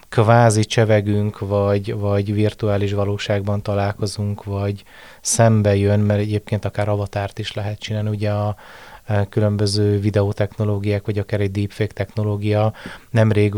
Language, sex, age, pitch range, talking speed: Hungarian, male, 30-49, 100-110 Hz, 120 wpm